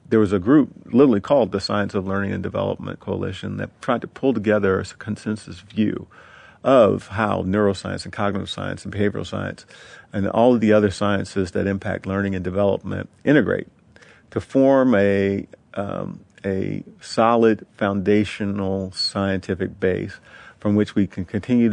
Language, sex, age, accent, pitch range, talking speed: English, male, 50-69, American, 95-110 Hz, 155 wpm